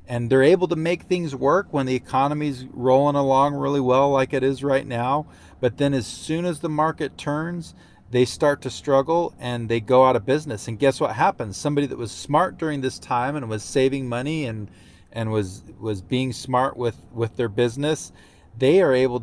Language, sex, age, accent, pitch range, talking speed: English, male, 30-49, American, 115-140 Hz, 205 wpm